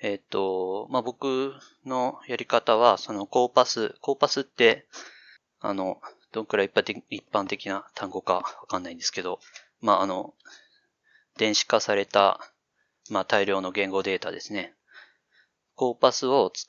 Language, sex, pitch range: Japanese, male, 100-135 Hz